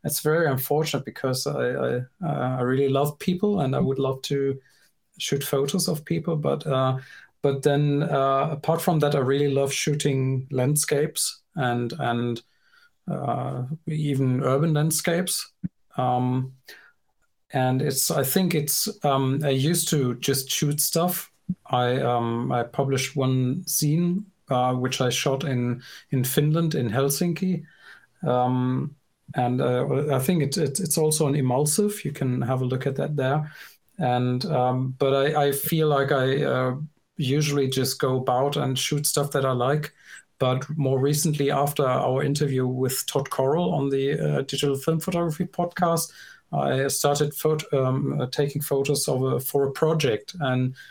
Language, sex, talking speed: English, male, 155 wpm